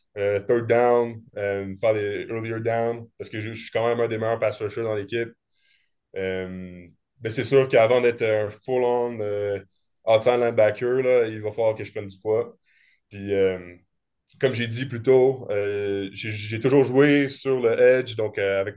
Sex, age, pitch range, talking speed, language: male, 20-39, 100-120 Hz, 190 wpm, French